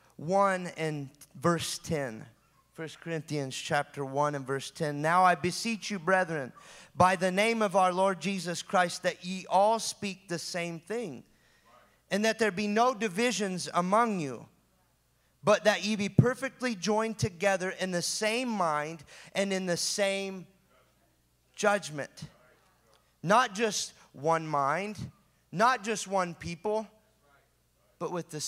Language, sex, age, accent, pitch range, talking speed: English, male, 30-49, American, 125-190 Hz, 140 wpm